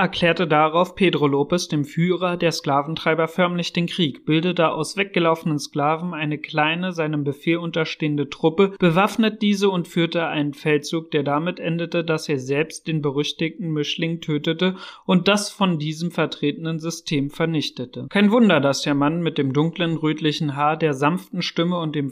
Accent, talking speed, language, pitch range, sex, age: German, 160 wpm, German, 145-170 Hz, male, 40-59